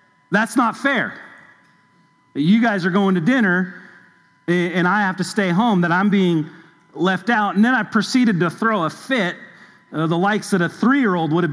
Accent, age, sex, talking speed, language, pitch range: American, 40-59, male, 185 wpm, English, 165-205 Hz